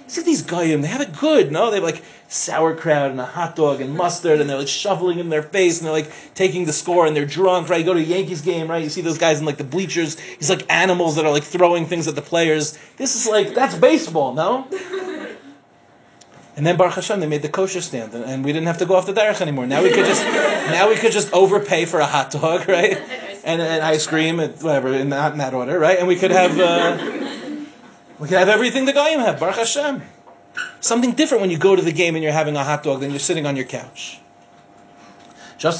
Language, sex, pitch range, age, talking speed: English, male, 140-185 Hz, 30-49, 245 wpm